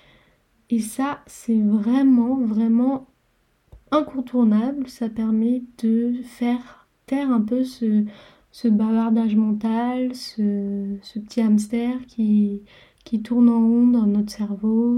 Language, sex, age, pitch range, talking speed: French, female, 20-39, 220-250 Hz, 115 wpm